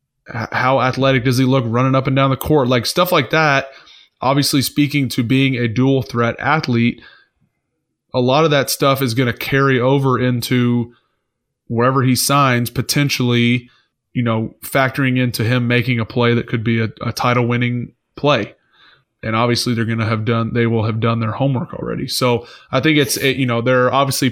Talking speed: 190 wpm